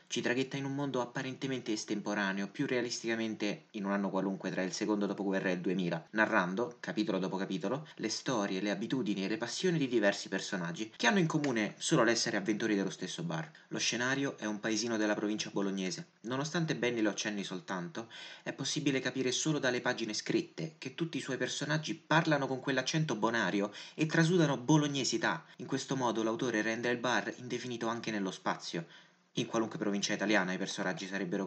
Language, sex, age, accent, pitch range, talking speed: Italian, male, 30-49, native, 100-130 Hz, 180 wpm